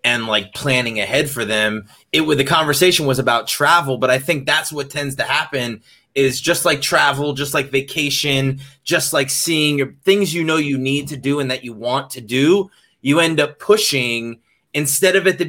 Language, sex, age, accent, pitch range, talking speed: English, male, 20-39, American, 125-155 Hz, 200 wpm